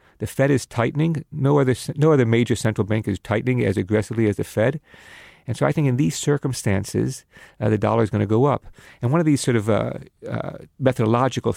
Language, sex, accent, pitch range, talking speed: English, male, American, 110-135 Hz, 215 wpm